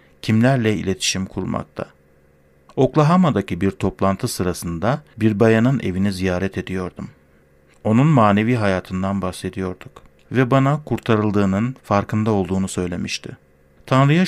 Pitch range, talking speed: 90-120 Hz, 95 wpm